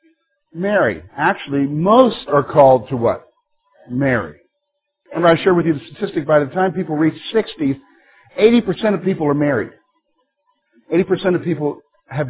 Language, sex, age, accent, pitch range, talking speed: English, male, 50-69, American, 150-220 Hz, 145 wpm